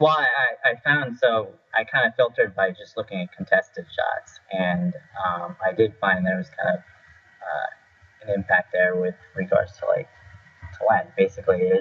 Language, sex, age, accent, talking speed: English, male, 30-49, American, 185 wpm